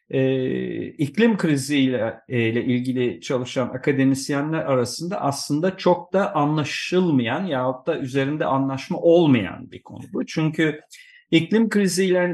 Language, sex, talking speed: Turkish, male, 115 wpm